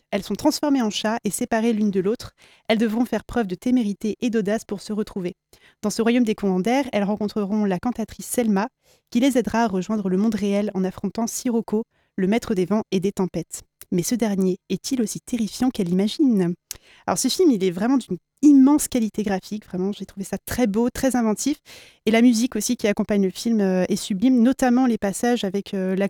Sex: female